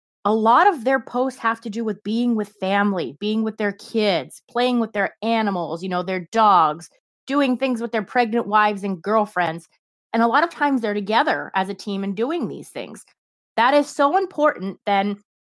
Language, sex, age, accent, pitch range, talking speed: English, female, 30-49, American, 195-255 Hz, 195 wpm